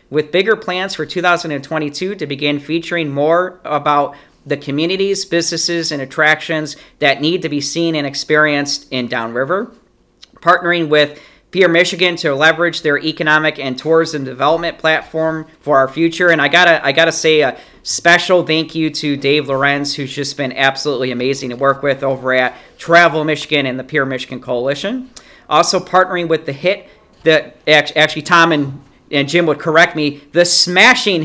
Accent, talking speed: American, 165 wpm